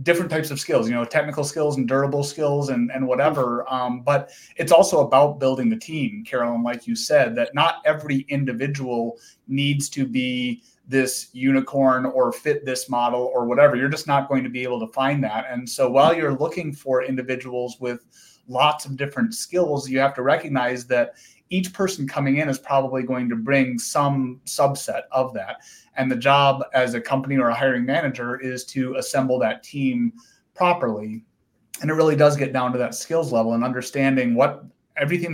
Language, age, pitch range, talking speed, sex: English, 30-49, 125-150 Hz, 190 wpm, male